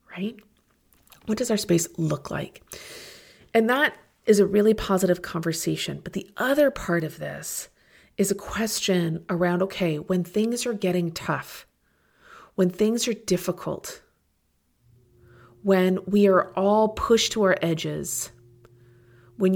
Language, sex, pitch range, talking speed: English, female, 165-200 Hz, 130 wpm